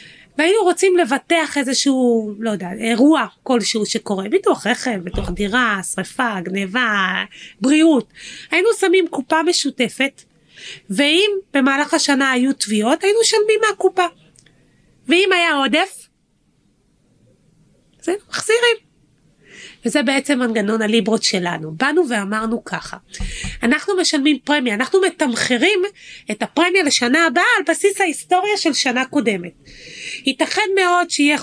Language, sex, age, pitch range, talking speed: Hebrew, female, 30-49, 230-365 Hz, 115 wpm